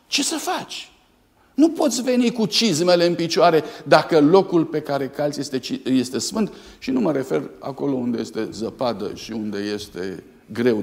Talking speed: 165 wpm